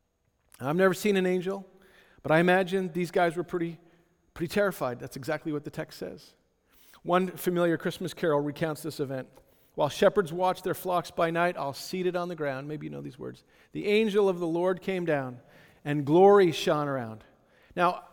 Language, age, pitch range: English, 40-59, 150-190 Hz